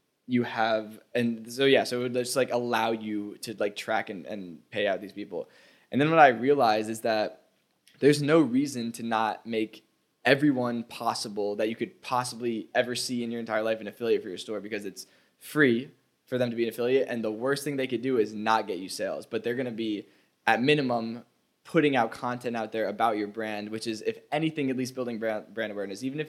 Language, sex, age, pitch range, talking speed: English, male, 10-29, 110-130 Hz, 225 wpm